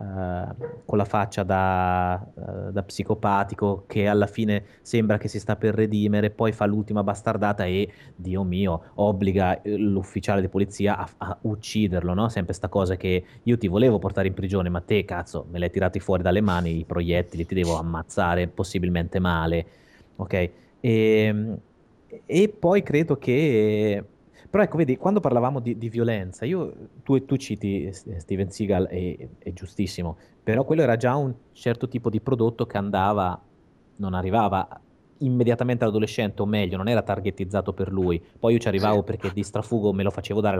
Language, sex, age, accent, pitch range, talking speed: Italian, male, 30-49, native, 95-115 Hz, 170 wpm